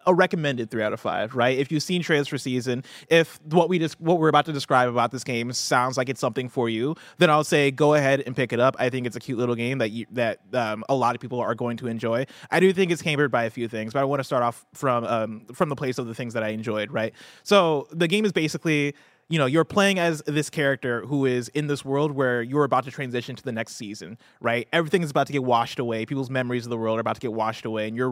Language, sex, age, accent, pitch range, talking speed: English, male, 20-39, American, 120-150 Hz, 285 wpm